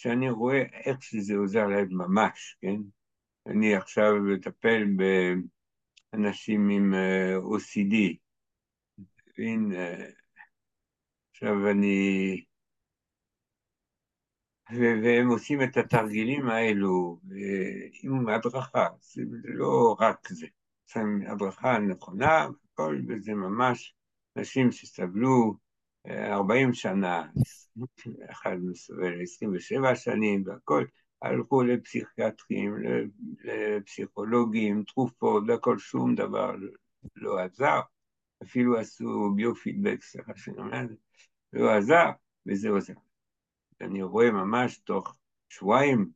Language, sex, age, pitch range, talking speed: Hebrew, male, 60-79, 95-120 Hz, 85 wpm